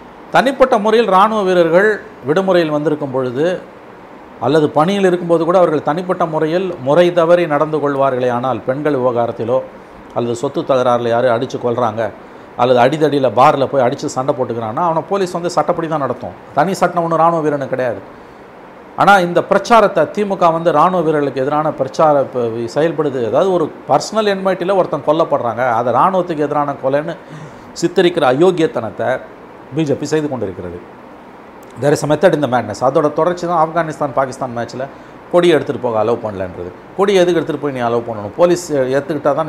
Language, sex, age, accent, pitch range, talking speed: Tamil, male, 50-69, native, 130-175 Hz, 145 wpm